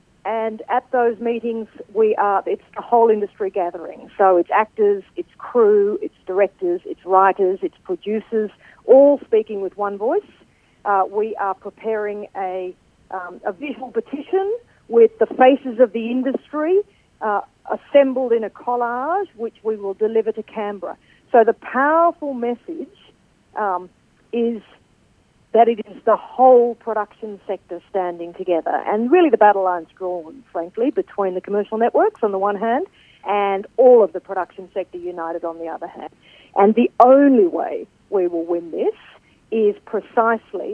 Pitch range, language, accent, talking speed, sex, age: 195-265 Hz, English, Australian, 150 wpm, female, 50-69